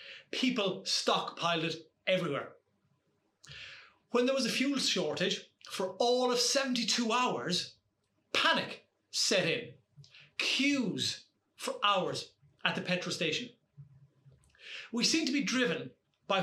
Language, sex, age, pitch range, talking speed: English, male, 30-49, 160-240 Hz, 115 wpm